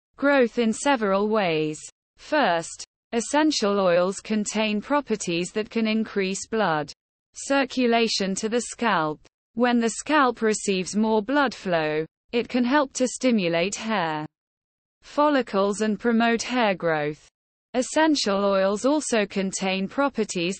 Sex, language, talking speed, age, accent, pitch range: female, English, 115 wpm, 20-39, British, 185-245 Hz